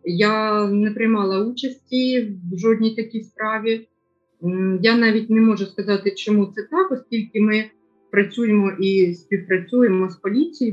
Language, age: Ukrainian, 30-49